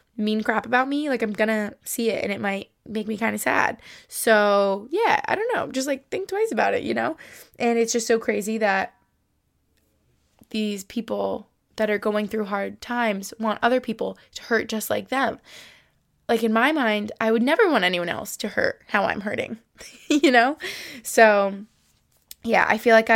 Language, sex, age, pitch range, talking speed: English, female, 20-39, 200-235 Hz, 190 wpm